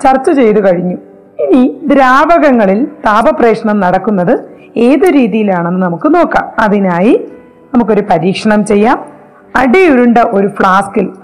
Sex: female